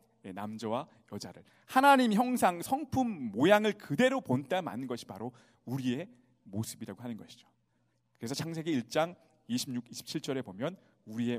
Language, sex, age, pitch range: Korean, male, 40-59, 110-175 Hz